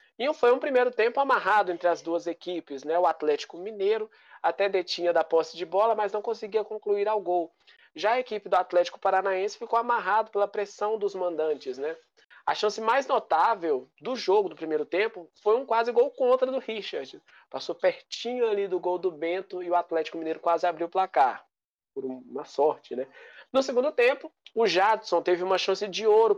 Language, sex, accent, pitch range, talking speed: Portuguese, male, Brazilian, 175-235 Hz, 190 wpm